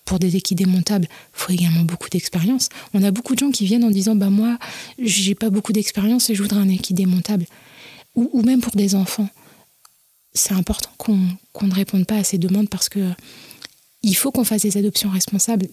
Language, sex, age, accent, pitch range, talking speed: French, female, 30-49, French, 185-220 Hz, 210 wpm